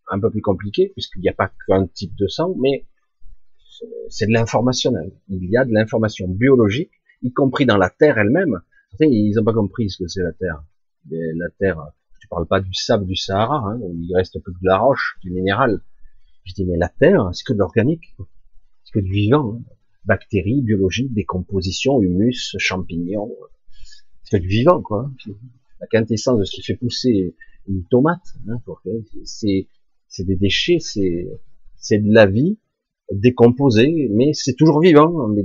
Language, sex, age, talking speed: French, male, 30-49, 185 wpm